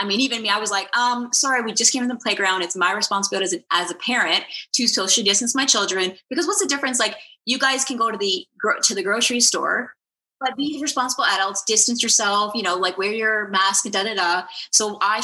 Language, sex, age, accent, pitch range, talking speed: English, female, 20-39, American, 200-275 Hz, 240 wpm